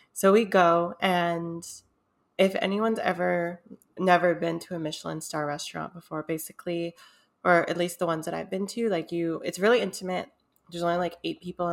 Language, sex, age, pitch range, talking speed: English, female, 20-39, 165-195 Hz, 180 wpm